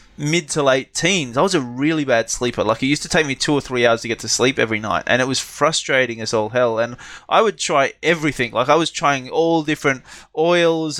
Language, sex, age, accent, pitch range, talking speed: English, male, 20-39, Australian, 125-160 Hz, 245 wpm